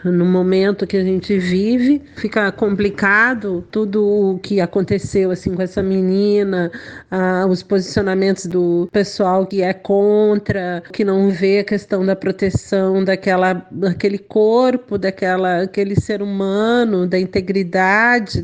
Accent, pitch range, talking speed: Brazilian, 190-235 Hz, 130 wpm